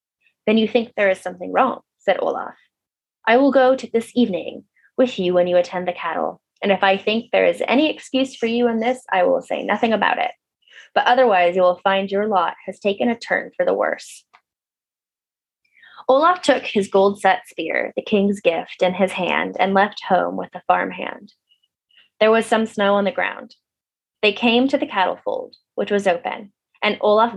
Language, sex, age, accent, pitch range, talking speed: English, female, 20-39, American, 185-250 Hz, 200 wpm